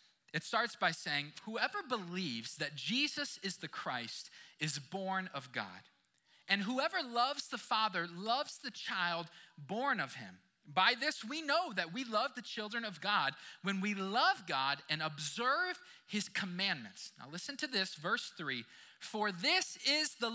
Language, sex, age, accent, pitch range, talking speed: English, male, 20-39, American, 165-240 Hz, 160 wpm